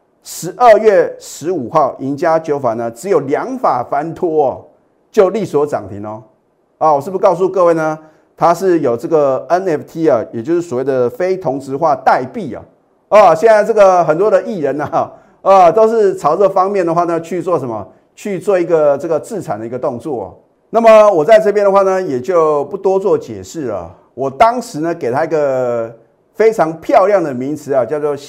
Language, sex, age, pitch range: Chinese, male, 30-49, 130-190 Hz